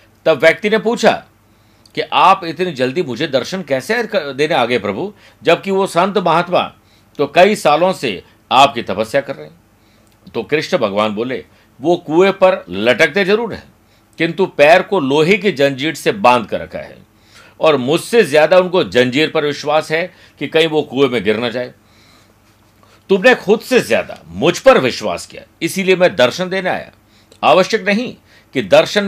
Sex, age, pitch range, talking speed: male, 50-69, 125-180 Hz, 165 wpm